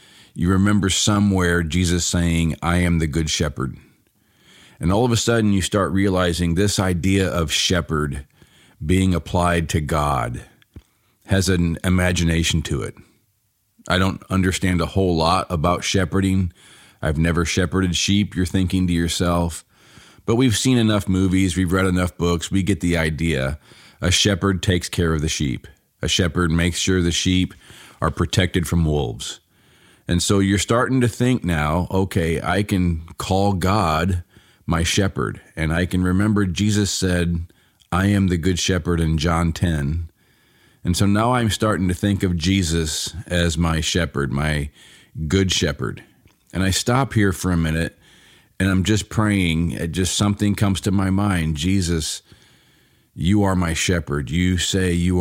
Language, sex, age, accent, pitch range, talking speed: English, male, 40-59, American, 85-95 Hz, 160 wpm